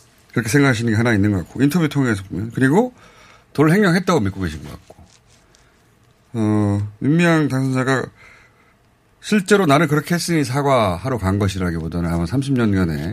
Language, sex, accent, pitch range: Korean, male, native, 95-135 Hz